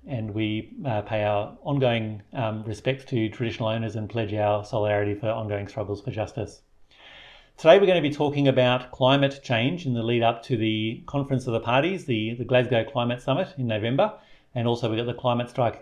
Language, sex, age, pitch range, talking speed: English, male, 40-59, 115-135 Hz, 195 wpm